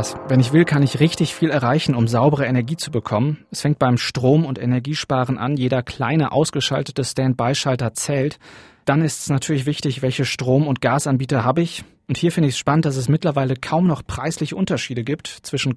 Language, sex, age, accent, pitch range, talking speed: German, male, 30-49, German, 130-155 Hz, 195 wpm